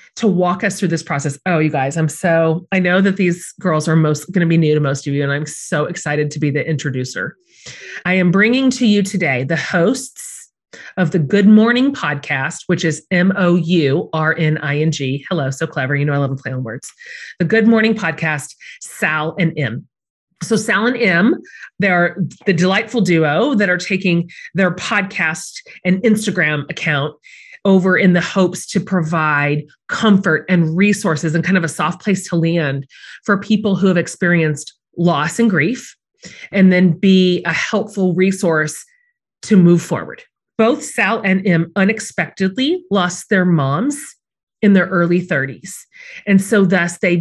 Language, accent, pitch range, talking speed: English, American, 160-200 Hz, 180 wpm